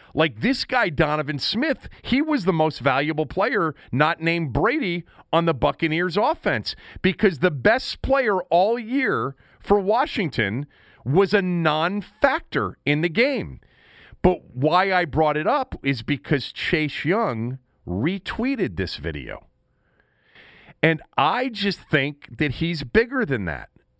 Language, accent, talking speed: English, American, 135 wpm